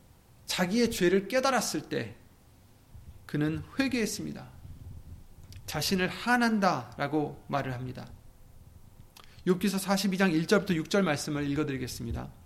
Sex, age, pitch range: male, 30-49, 125-195 Hz